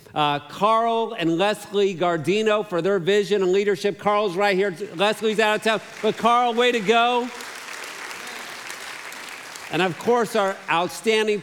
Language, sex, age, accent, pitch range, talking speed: English, male, 50-69, American, 155-205 Hz, 140 wpm